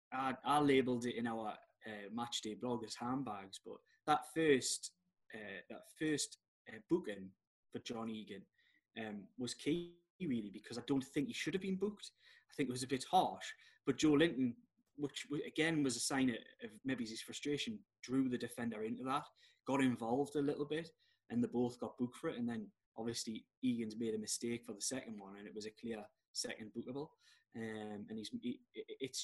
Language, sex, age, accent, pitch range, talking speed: English, male, 10-29, British, 115-150 Hz, 195 wpm